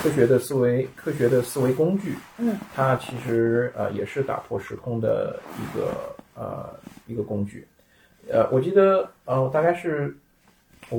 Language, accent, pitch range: Chinese, native, 115-145 Hz